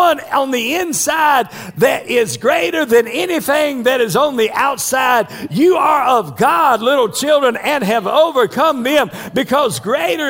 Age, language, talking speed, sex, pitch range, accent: 50-69, English, 145 wpm, male, 265-335 Hz, American